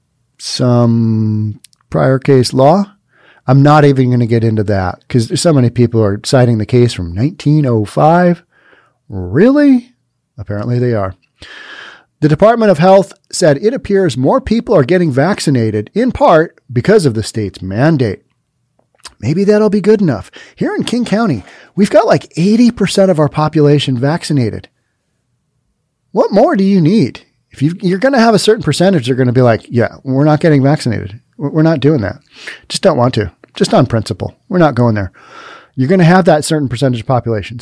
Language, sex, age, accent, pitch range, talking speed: English, male, 40-59, American, 120-165 Hz, 180 wpm